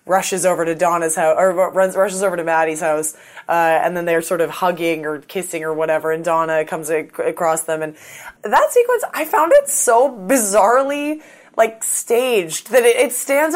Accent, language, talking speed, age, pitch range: American, English, 175 wpm, 20-39, 175-280 Hz